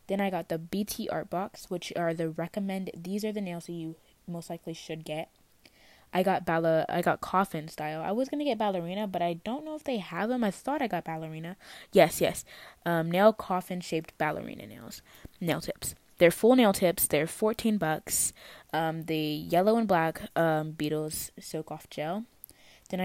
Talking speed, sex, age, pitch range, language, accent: 195 wpm, female, 20-39, 165-210 Hz, English, American